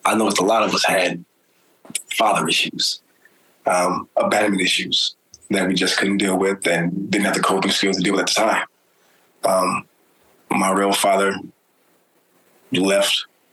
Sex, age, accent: male, 20-39, American